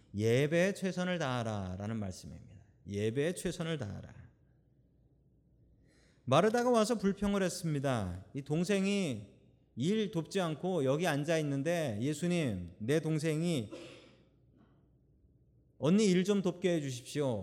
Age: 30-49